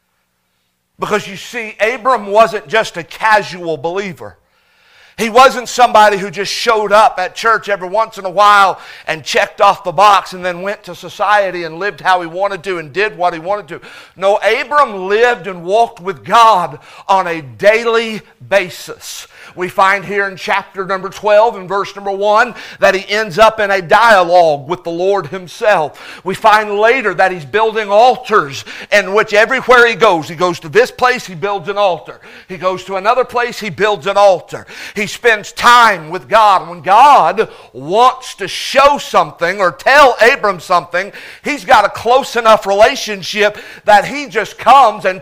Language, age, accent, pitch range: English, 50-69, American, 190-225 Hz